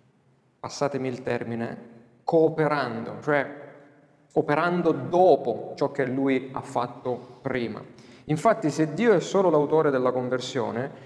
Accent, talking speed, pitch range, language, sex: native, 115 wpm, 125-160 Hz, Italian, male